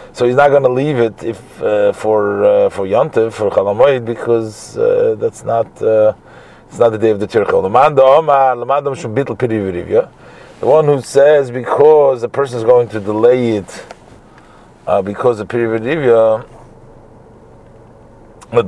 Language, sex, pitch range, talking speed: English, male, 115-135 Hz, 140 wpm